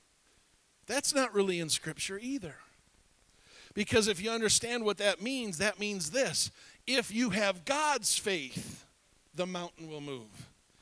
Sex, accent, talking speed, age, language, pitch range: male, American, 140 wpm, 50-69, English, 180-260 Hz